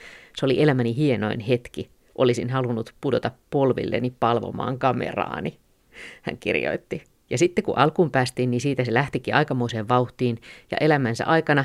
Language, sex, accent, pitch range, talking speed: Finnish, female, native, 120-145 Hz, 140 wpm